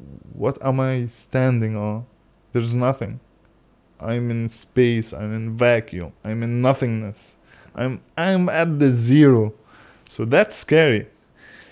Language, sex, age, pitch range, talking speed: English, male, 20-39, 115-140 Hz, 125 wpm